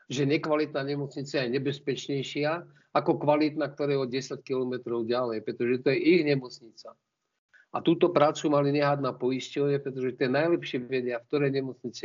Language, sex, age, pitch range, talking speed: Slovak, male, 50-69, 120-145 Hz, 155 wpm